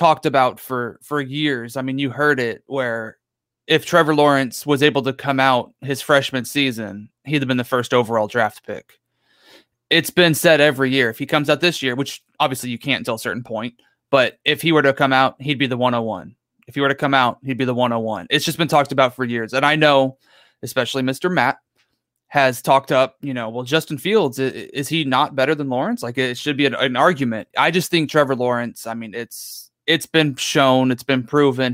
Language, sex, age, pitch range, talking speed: English, male, 20-39, 125-145 Hz, 220 wpm